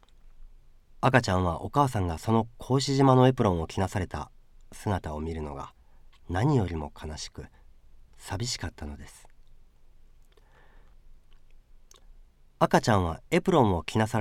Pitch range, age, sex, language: 80-120 Hz, 40-59, male, Japanese